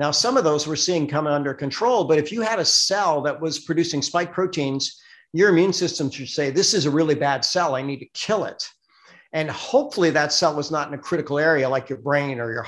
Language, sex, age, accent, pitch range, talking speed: English, male, 50-69, American, 135-165 Hz, 240 wpm